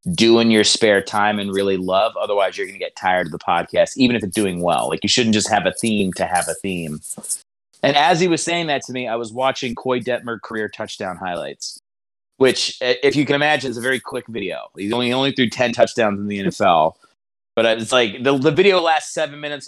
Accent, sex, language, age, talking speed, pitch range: American, male, English, 30-49, 240 wpm, 105-135 Hz